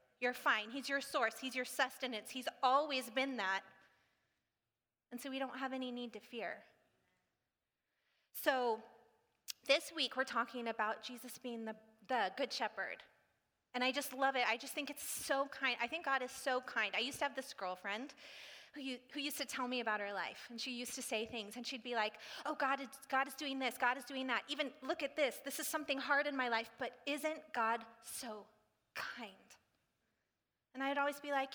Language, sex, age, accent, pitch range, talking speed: English, female, 30-49, American, 225-275 Hz, 200 wpm